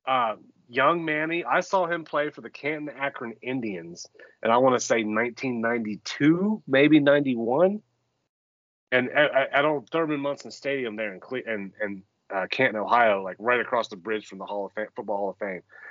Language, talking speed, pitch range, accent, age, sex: English, 190 wpm, 125-155 Hz, American, 30-49, male